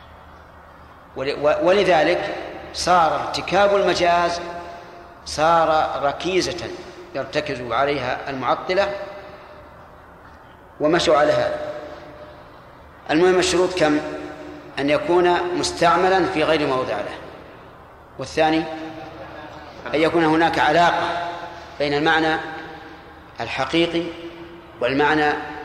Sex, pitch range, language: male, 150-175 Hz, Arabic